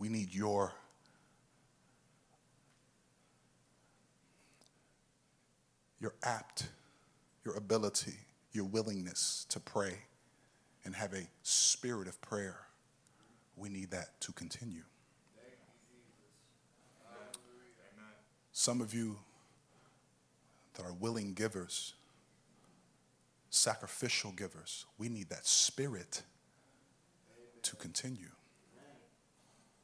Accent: American